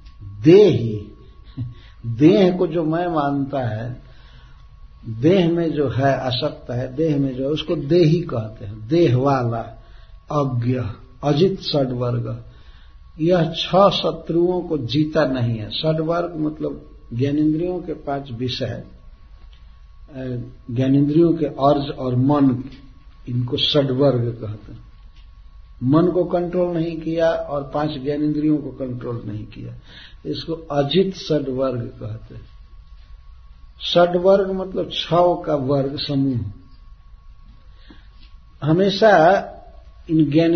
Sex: male